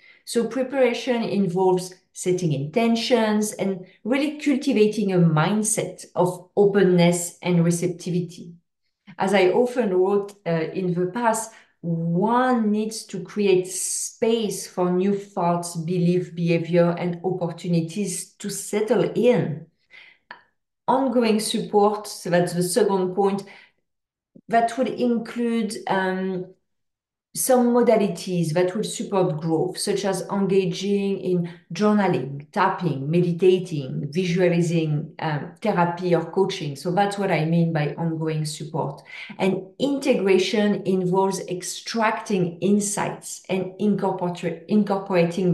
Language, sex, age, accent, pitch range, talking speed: English, female, 40-59, French, 175-210 Hz, 105 wpm